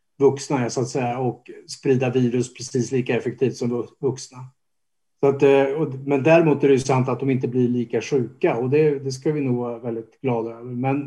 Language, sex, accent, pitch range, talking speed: Swedish, male, Norwegian, 125-140 Hz, 205 wpm